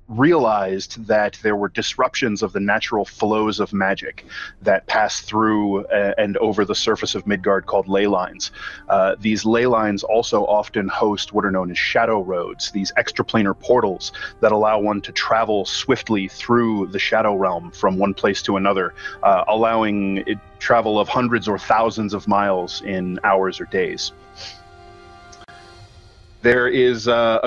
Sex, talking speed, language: male, 155 wpm, English